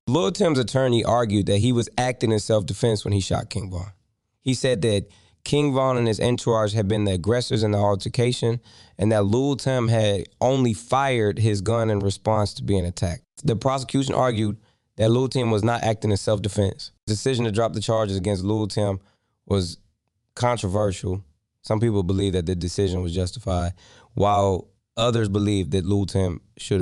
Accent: American